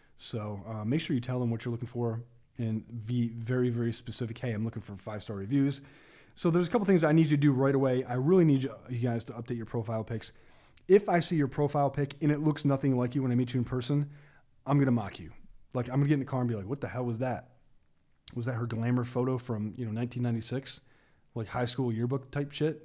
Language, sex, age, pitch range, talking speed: English, male, 30-49, 120-140 Hz, 260 wpm